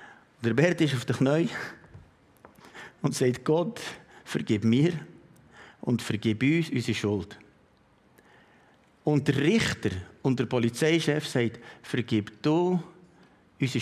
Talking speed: 115 wpm